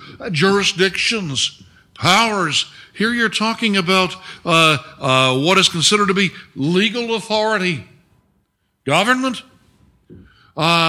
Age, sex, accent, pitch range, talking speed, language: 60-79, male, American, 130-195 Hz, 100 wpm, English